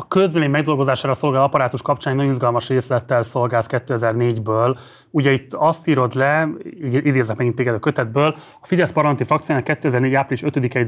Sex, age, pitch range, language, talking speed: male, 30-49, 120-145 Hz, Hungarian, 160 wpm